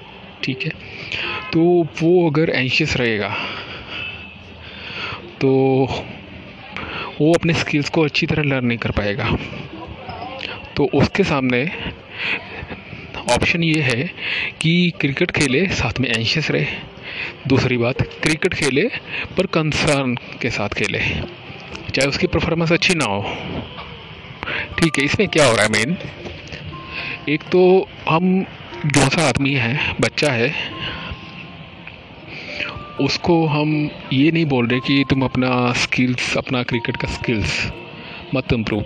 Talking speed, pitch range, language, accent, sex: 120 wpm, 120-165 Hz, Hindi, native, male